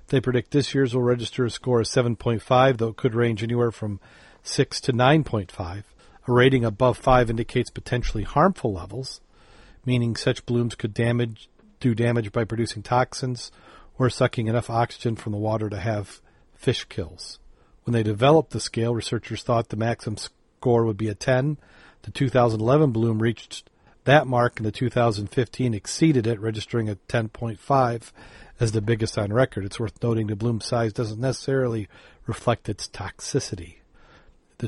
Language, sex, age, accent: English, male, 40-59, American